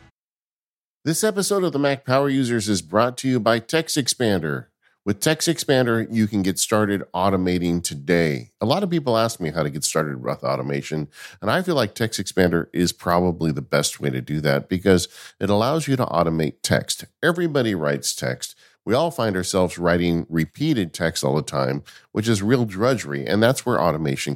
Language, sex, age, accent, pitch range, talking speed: English, male, 50-69, American, 80-115 Hz, 190 wpm